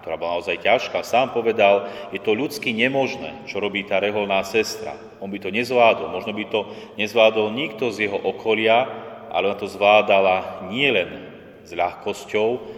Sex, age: male, 30-49